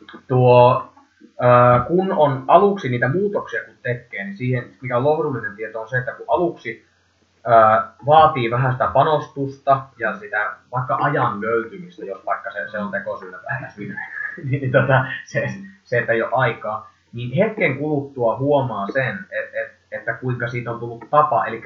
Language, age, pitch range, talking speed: Finnish, 20-39, 120-150 Hz, 160 wpm